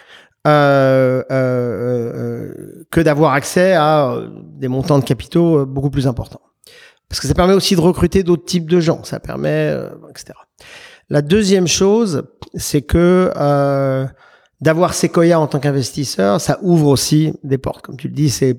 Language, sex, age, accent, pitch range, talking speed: French, male, 40-59, French, 135-160 Hz, 160 wpm